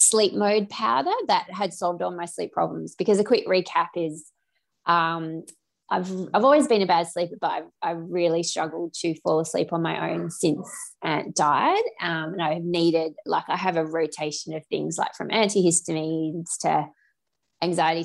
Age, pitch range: 20-39, 165-220 Hz